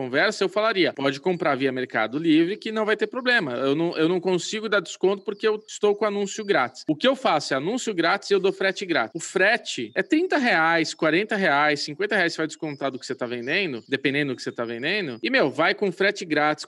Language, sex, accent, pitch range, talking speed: Portuguese, male, Brazilian, 145-210 Hz, 240 wpm